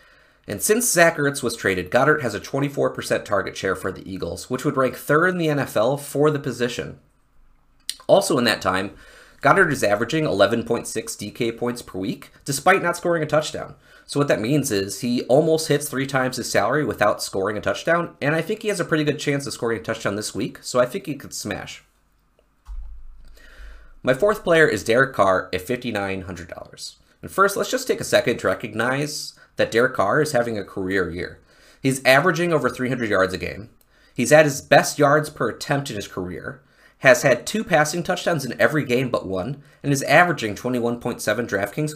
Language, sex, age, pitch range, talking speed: English, male, 30-49, 120-155 Hz, 195 wpm